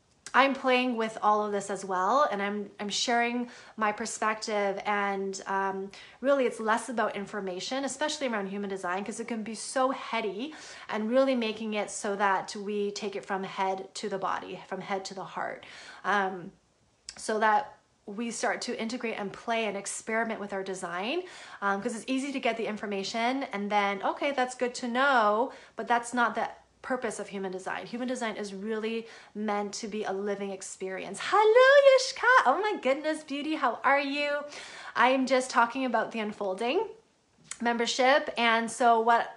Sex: female